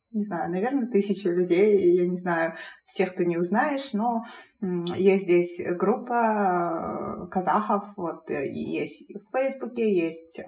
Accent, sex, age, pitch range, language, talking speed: native, female, 20-39, 175-215 Hz, Russian, 125 wpm